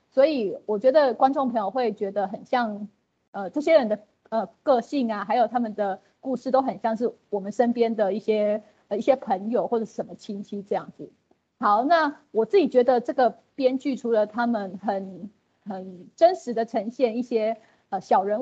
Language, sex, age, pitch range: Chinese, female, 30-49, 210-260 Hz